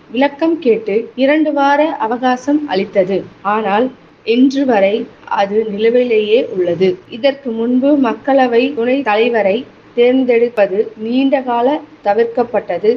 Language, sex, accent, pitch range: Tamil, female, native, 215-260 Hz